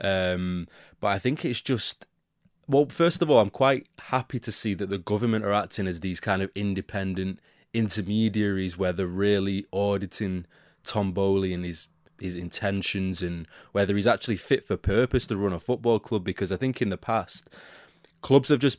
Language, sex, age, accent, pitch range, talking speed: English, male, 20-39, British, 95-110 Hz, 180 wpm